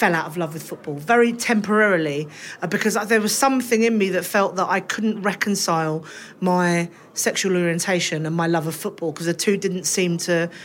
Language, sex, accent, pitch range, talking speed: English, female, British, 170-210 Hz, 190 wpm